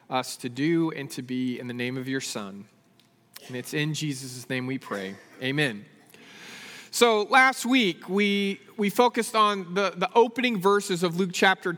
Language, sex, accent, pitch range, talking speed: English, male, American, 185-240 Hz, 175 wpm